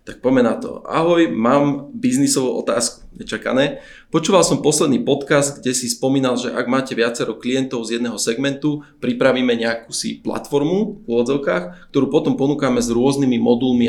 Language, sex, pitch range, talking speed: Slovak, male, 115-140 Hz, 155 wpm